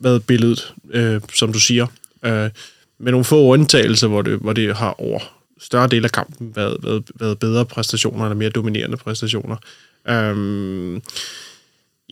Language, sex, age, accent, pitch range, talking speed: Danish, male, 20-39, native, 115-135 Hz, 155 wpm